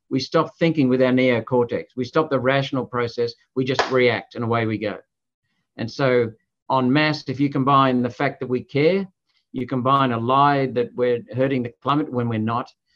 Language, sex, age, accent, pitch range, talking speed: English, male, 50-69, Australian, 125-155 Hz, 195 wpm